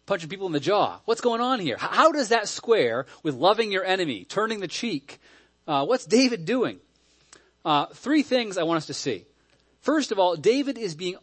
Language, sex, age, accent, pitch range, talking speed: English, male, 30-49, American, 150-250 Hz, 205 wpm